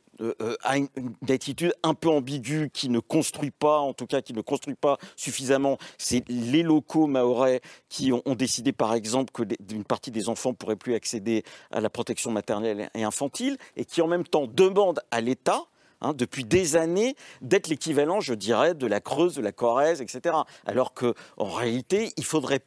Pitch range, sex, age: 125-165 Hz, male, 50-69